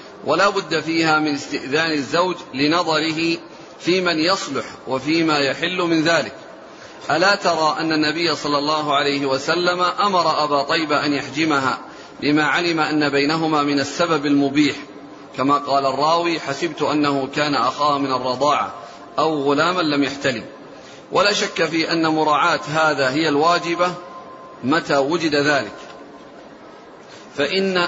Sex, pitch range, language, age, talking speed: male, 145-175 Hz, Arabic, 40-59, 125 wpm